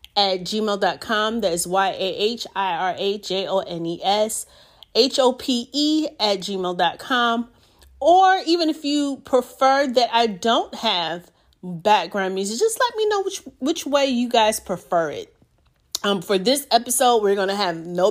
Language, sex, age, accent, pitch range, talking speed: English, female, 30-49, American, 180-240 Hz, 125 wpm